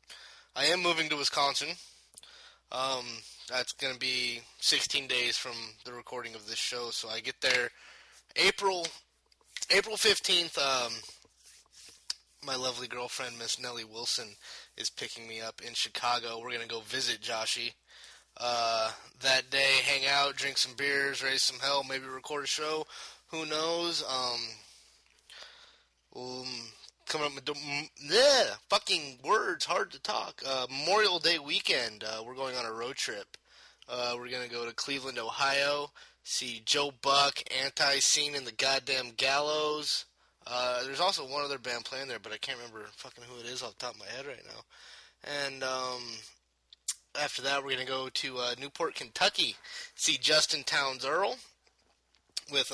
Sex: male